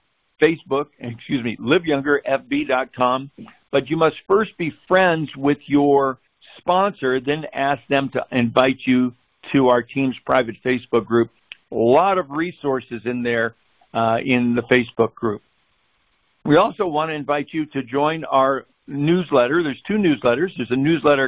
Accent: American